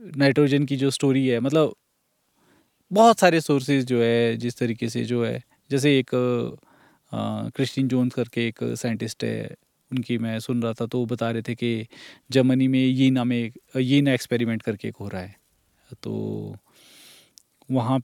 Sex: male